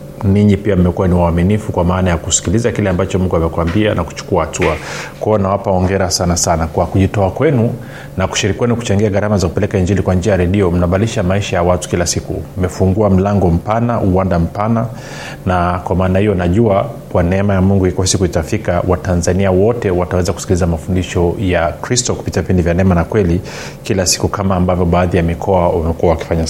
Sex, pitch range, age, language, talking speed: male, 90-105 Hz, 30-49, Swahili, 180 wpm